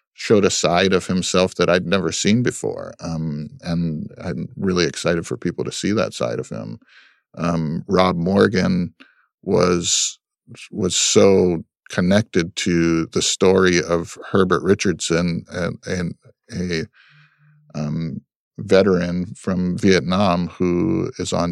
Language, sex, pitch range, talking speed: English, male, 85-100 Hz, 130 wpm